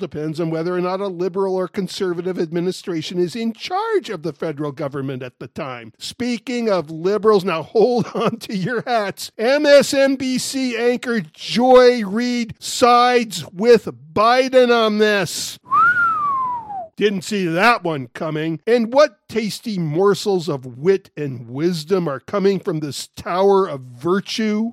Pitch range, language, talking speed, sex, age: 180-230 Hz, English, 140 wpm, male, 50-69